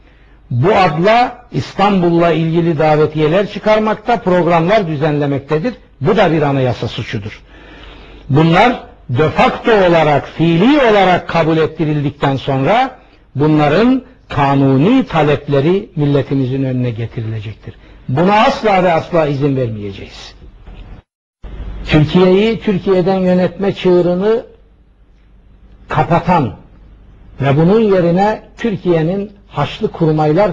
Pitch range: 120-180 Hz